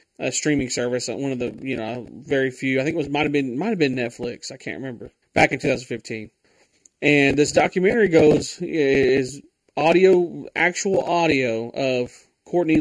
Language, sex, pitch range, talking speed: English, male, 130-150 Hz, 170 wpm